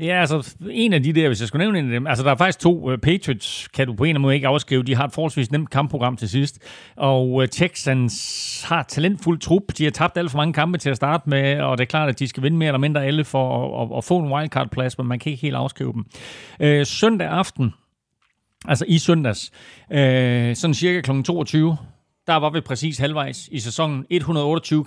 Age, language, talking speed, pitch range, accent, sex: 40-59, Danish, 220 wpm, 130-160 Hz, native, male